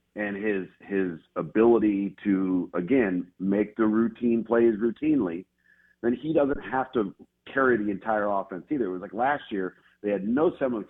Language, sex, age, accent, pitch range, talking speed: English, male, 50-69, American, 95-120 Hz, 165 wpm